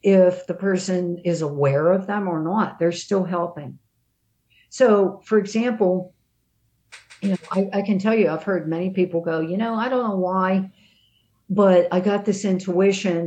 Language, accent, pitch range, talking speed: English, American, 150-185 Hz, 165 wpm